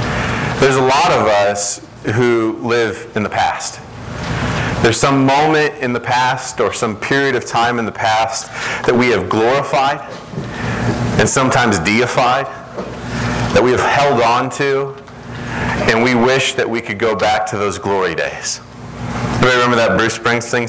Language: English